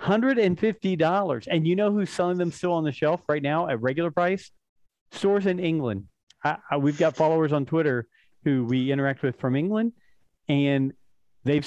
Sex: male